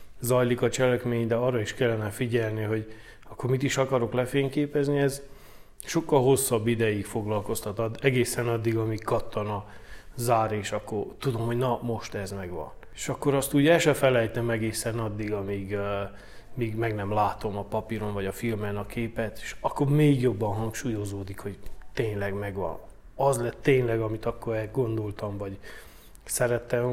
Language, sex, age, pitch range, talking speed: Hungarian, male, 30-49, 105-130 Hz, 160 wpm